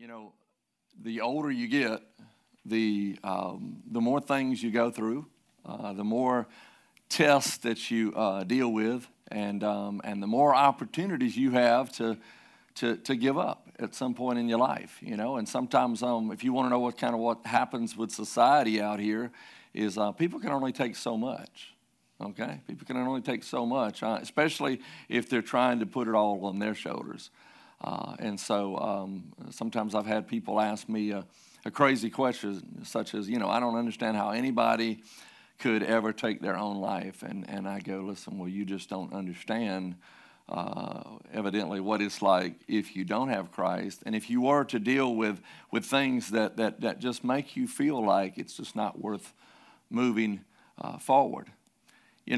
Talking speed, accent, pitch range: 185 wpm, American, 105-125 Hz